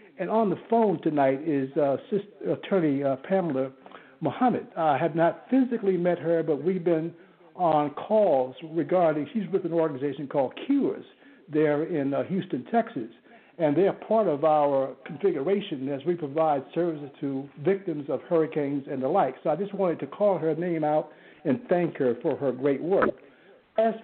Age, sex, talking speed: 60-79, male, 175 wpm